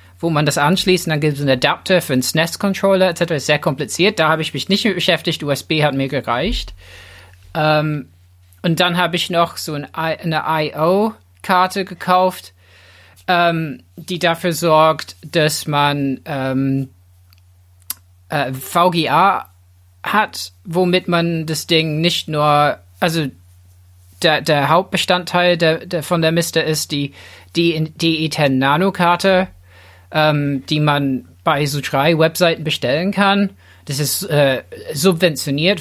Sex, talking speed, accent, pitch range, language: male, 130 wpm, German, 130-170 Hz, German